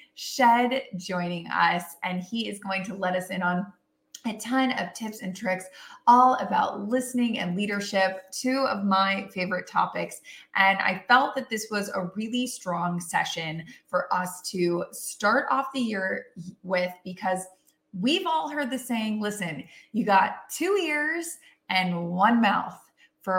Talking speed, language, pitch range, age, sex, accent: 155 wpm, English, 185-255 Hz, 20-39, female, American